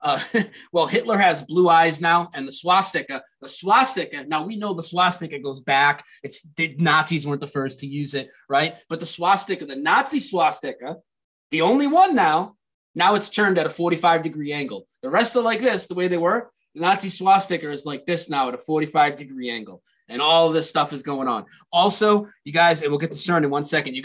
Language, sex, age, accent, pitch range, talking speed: English, male, 20-39, American, 145-180 Hz, 210 wpm